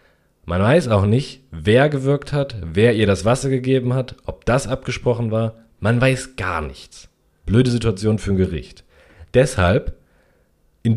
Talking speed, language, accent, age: 155 wpm, German, German, 40-59